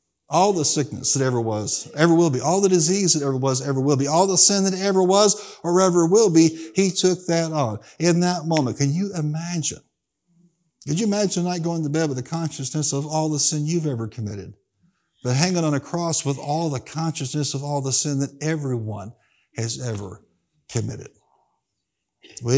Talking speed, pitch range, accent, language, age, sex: 195 wpm, 125-160 Hz, American, English, 60-79, male